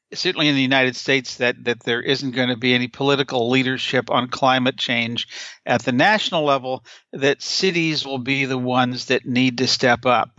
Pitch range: 125-140 Hz